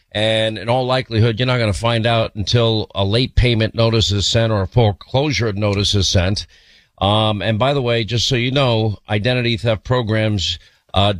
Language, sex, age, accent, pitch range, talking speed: English, male, 50-69, American, 105-125 Hz, 195 wpm